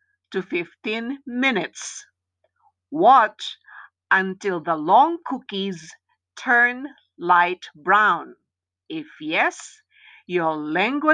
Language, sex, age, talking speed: Filipino, female, 50-69, 80 wpm